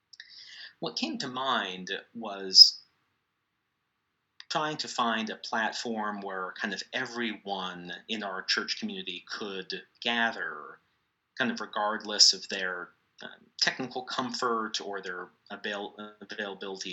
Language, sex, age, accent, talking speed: English, male, 30-49, American, 105 wpm